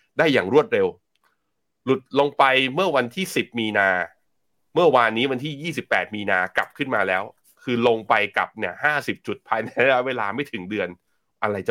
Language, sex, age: Thai, male, 20-39